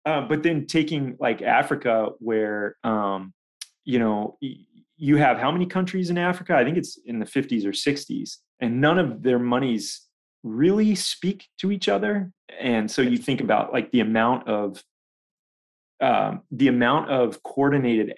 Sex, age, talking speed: male, 20-39, 160 wpm